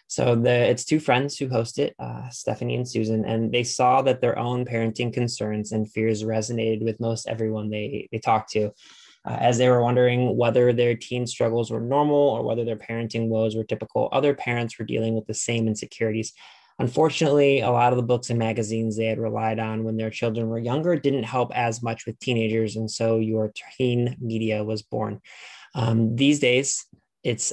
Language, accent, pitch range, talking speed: English, American, 110-125 Hz, 195 wpm